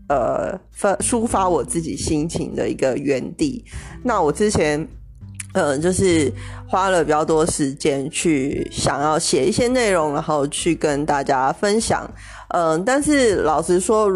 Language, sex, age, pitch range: Chinese, female, 20-39, 145-195 Hz